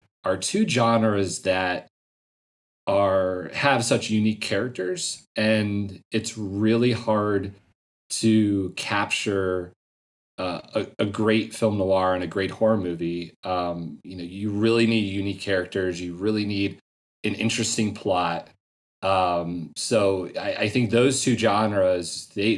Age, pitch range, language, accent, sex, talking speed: 30-49, 90-110 Hz, English, American, male, 130 wpm